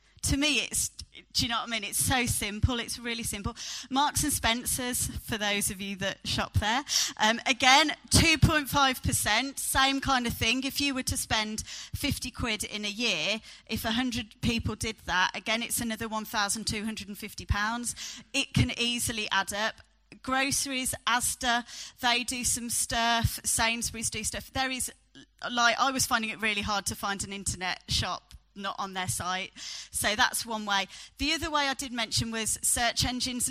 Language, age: English, 30-49